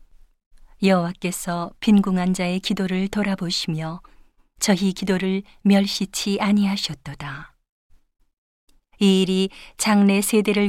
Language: Korean